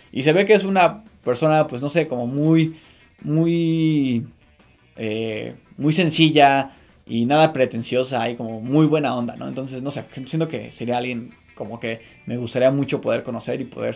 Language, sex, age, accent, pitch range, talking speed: Spanish, male, 20-39, Mexican, 120-145 Hz, 175 wpm